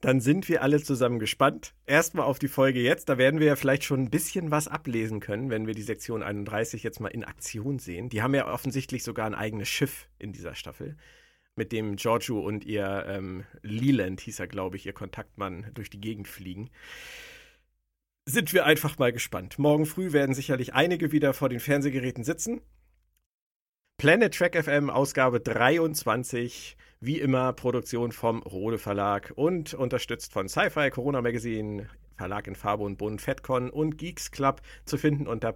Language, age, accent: German, 50-69, German